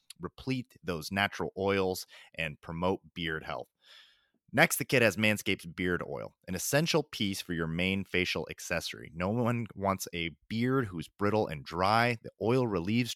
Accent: American